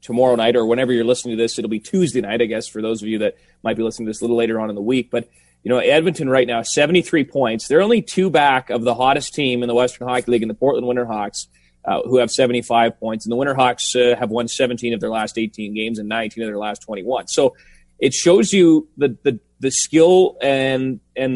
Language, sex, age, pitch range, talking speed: English, male, 30-49, 115-150 Hz, 250 wpm